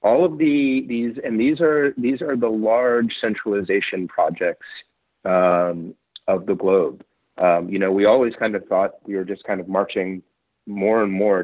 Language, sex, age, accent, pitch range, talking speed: English, male, 30-49, American, 90-115 Hz, 180 wpm